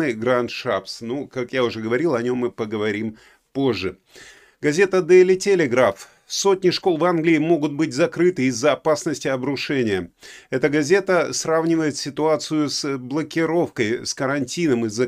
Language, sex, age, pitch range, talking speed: Russian, male, 30-49, 130-160 Hz, 135 wpm